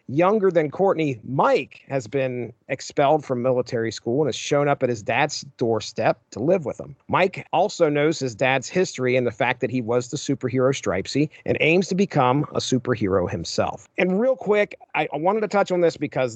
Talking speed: 200 wpm